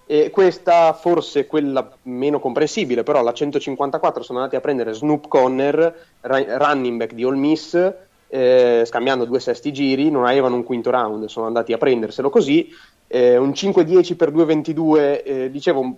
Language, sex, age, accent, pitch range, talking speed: Italian, male, 30-49, native, 120-150 Hz, 160 wpm